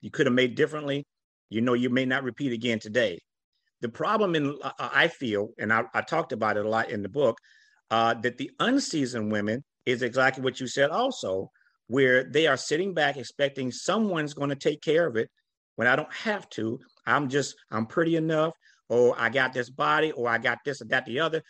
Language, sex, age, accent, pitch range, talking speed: English, male, 50-69, American, 130-200 Hz, 210 wpm